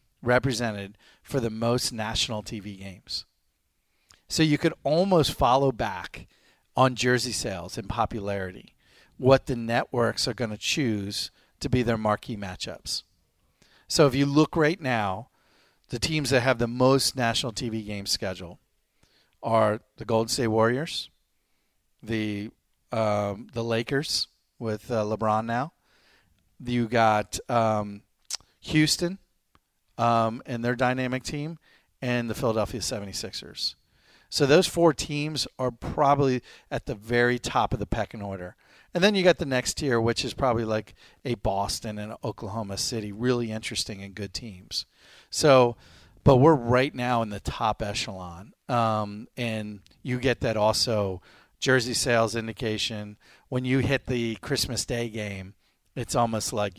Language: English